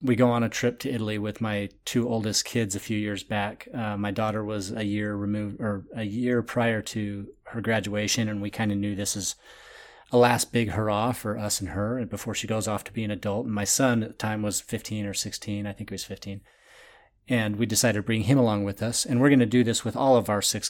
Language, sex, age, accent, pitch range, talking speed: English, male, 30-49, American, 105-120 Hz, 250 wpm